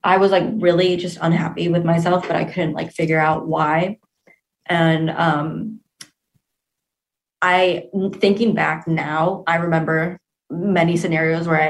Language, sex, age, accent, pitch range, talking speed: English, female, 20-39, American, 165-180 Hz, 140 wpm